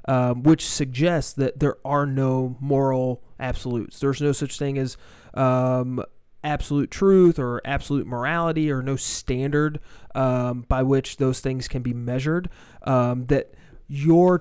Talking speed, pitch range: 140 wpm, 130-150 Hz